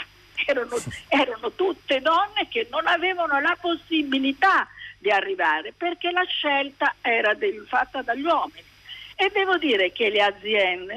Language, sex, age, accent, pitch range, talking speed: Italian, female, 50-69, native, 220-340 Hz, 130 wpm